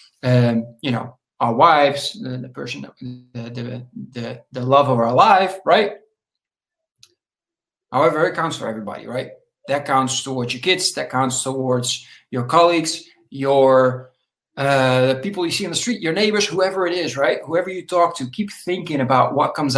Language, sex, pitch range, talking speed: English, male, 130-190 Hz, 175 wpm